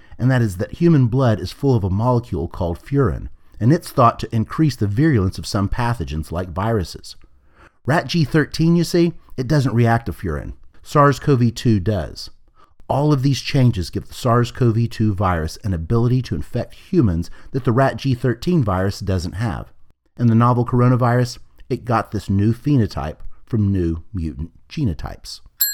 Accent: American